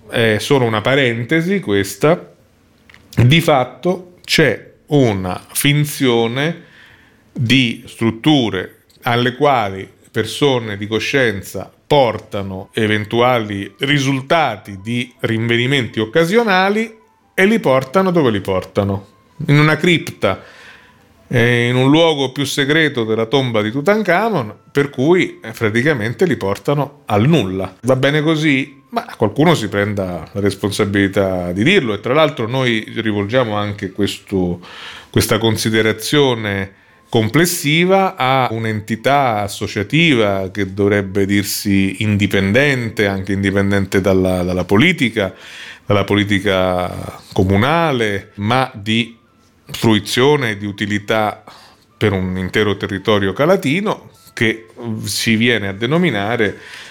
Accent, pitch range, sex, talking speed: native, 100-140 Hz, male, 105 wpm